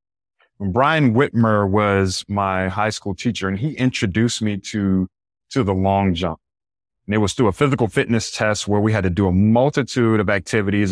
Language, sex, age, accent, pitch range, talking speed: English, male, 30-49, American, 95-130 Hz, 185 wpm